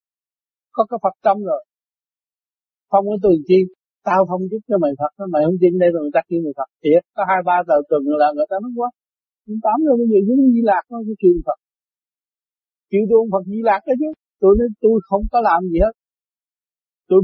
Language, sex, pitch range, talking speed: Vietnamese, male, 150-210 Hz, 230 wpm